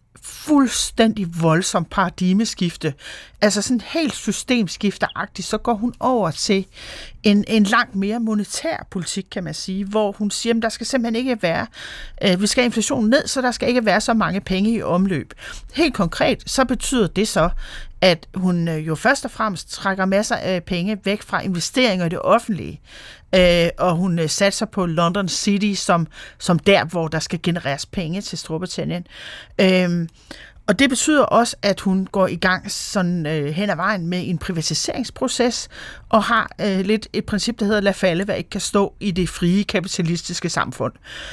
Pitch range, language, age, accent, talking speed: 180-225 Hz, Danish, 40-59, native, 170 wpm